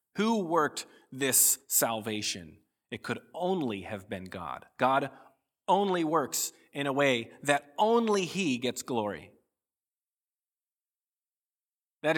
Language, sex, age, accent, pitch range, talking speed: English, male, 30-49, American, 120-170 Hz, 110 wpm